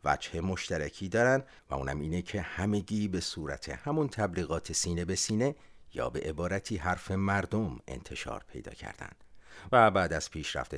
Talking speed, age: 150 wpm, 50-69